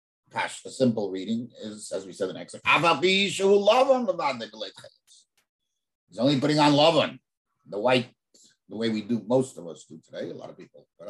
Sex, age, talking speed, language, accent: male, 50-69, 170 wpm, English, American